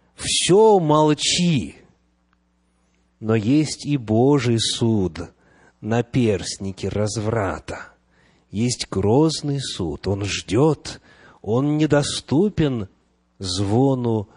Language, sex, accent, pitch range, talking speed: Russian, male, native, 95-145 Hz, 75 wpm